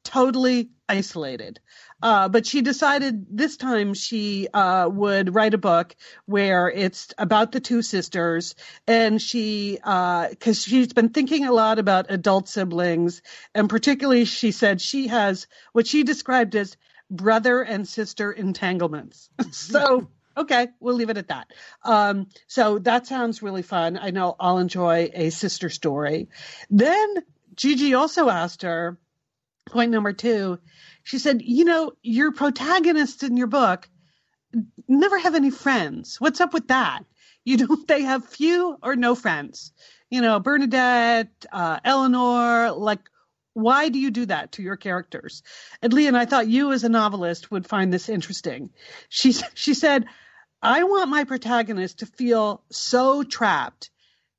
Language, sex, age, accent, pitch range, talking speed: English, female, 50-69, American, 195-260 Hz, 150 wpm